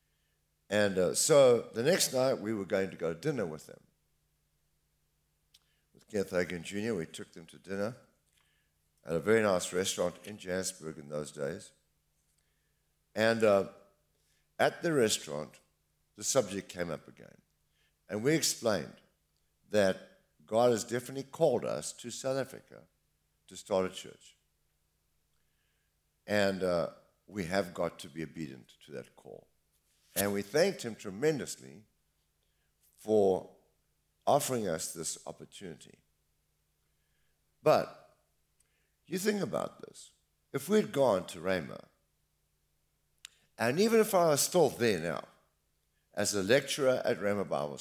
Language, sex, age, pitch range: English, male, 60-79, 75-110 Hz